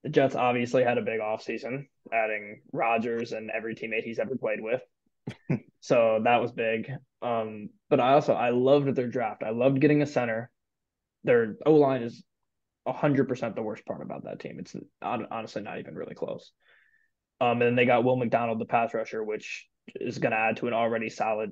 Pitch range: 115-135 Hz